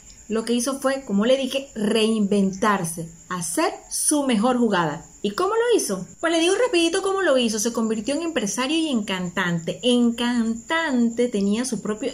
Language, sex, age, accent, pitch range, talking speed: Spanish, female, 30-49, American, 200-275 Hz, 175 wpm